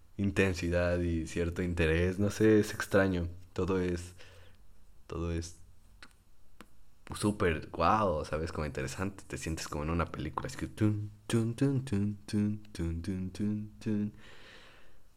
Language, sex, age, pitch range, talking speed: Spanish, male, 20-39, 85-105 Hz, 105 wpm